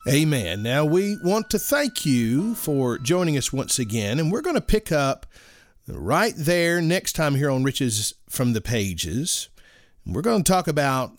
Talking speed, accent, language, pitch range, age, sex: 175 wpm, American, English, 125-175 Hz, 40-59, male